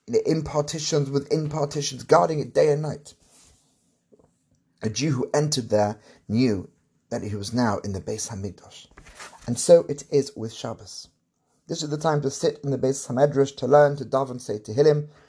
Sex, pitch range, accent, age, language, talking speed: male, 115-150 Hz, British, 30-49, English, 180 wpm